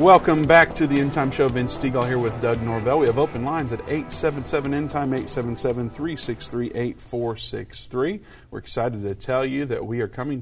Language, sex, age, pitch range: English, male, 50-69, 110-130 Hz